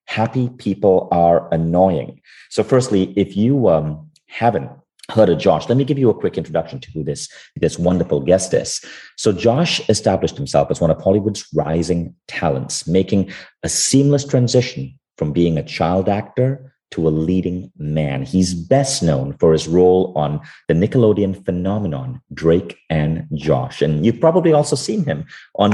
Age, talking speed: 30-49, 165 wpm